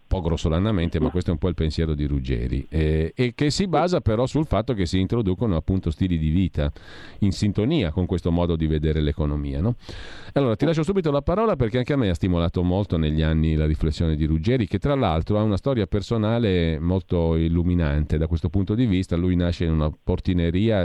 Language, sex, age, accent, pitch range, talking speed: Italian, male, 40-59, native, 80-105 Hz, 210 wpm